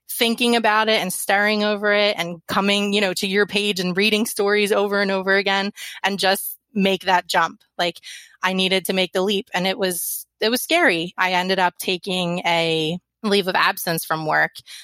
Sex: female